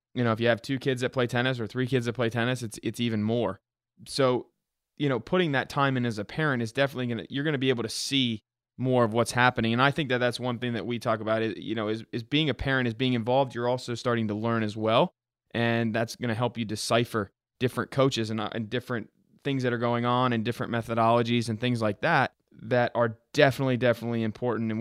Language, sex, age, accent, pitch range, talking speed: English, male, 20-39, American, 115-130 Hz, 255 wpm